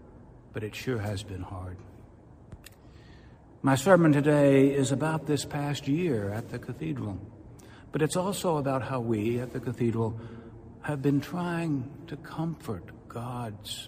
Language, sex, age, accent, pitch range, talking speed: English, male, 60-79, American, 110-140 Hz, 140 wpm